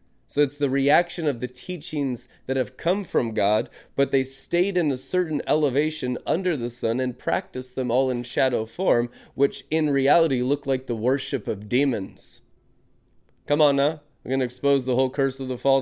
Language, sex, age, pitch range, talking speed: English, male, 20-39, 125-155 Hz, 195 wpm